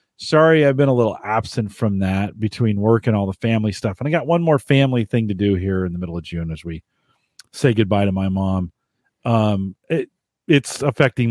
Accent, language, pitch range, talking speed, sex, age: American, English, 95-135 Hz, 210 wpm, male, 40-59